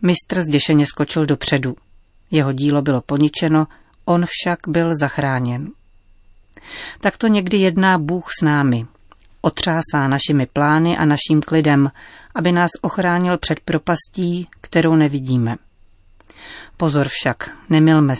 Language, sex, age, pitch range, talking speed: Czech, female, 40-59, 135-160 Hz, 115 wpm